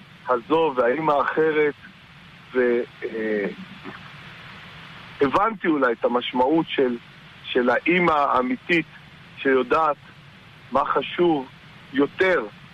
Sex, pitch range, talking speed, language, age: male, 130-160 Hz, 70 wpm, Hebrew, 50-69